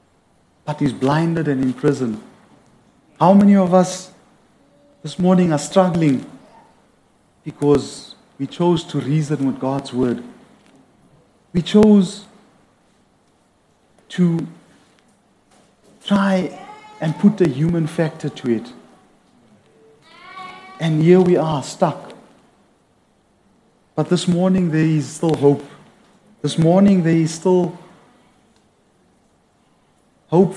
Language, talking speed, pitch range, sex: English, 95 wpm, 145-180 Hz, male